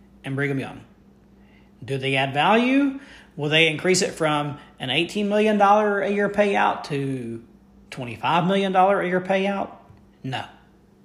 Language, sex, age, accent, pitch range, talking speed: English, male, 40-59, American, 155-200 Hz, 135 wpm